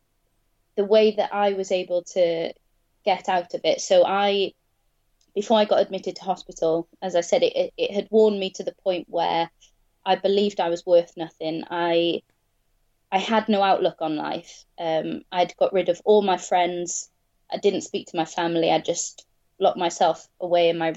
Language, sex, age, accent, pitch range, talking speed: English, female, 20-39, British, 170-205 Hz, 185 wpm